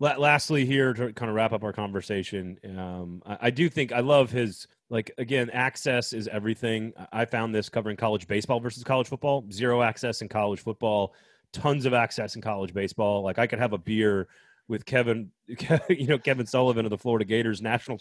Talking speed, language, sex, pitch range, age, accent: 195 wpm, English, male, 100-120 Hz, 30-49, American